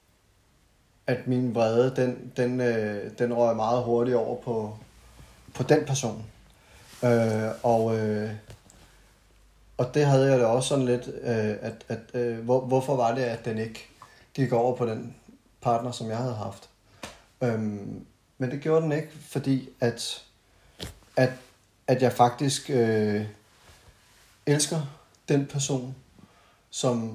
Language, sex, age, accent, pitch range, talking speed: Danish, male, 30-49, native, 110-125 Hz, 130 wpm